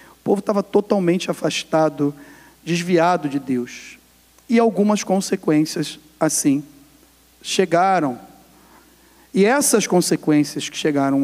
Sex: male